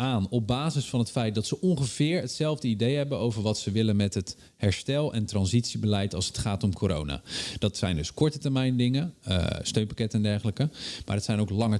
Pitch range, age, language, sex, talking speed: 95-120 Hz, 40-59, Dutch, male, 210 wpm